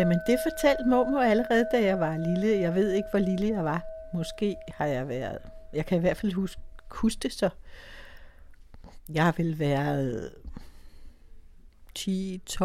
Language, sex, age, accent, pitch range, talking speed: Danish, female, 60-79, native, 160-240 Hz, 155 wpm